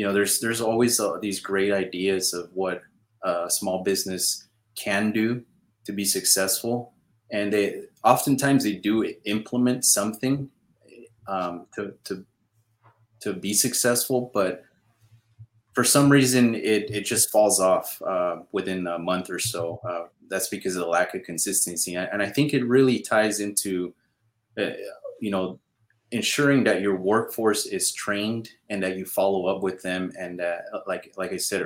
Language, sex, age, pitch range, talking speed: English, male, 30-49, 90-110 Hz, 160 wpm